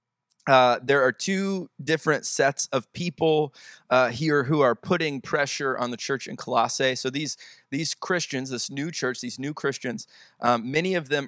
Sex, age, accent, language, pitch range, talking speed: male, 20-39, American, English, 125-150 Hz, 175 wpm